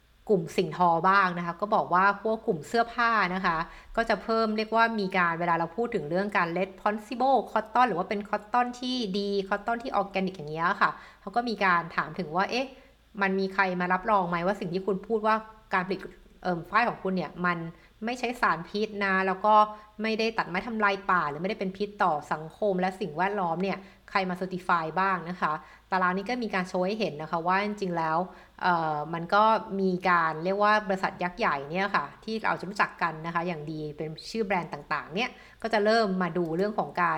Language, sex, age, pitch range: Thai, female, 60-79, 175-215 Hz